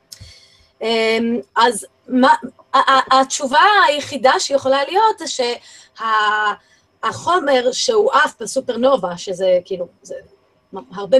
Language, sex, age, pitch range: Hebrew, female, 20-39, 240-355 Hz